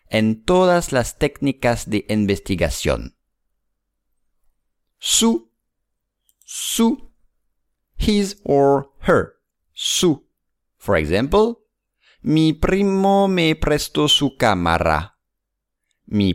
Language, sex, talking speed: English, male, 75 wpm